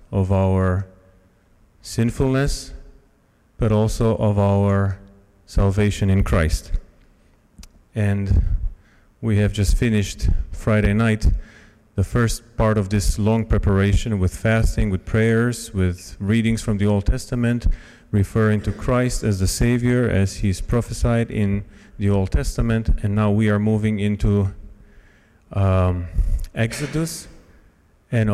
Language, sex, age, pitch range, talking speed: English, male, 40-59, 95-110 Hz, 120 wpm